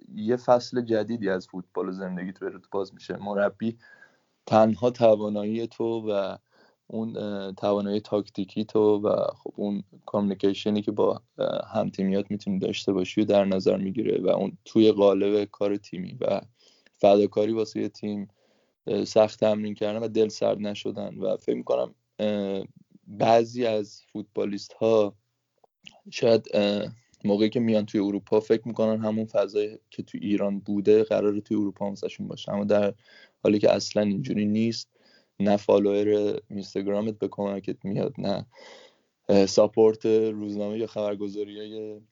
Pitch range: 100-110 Hz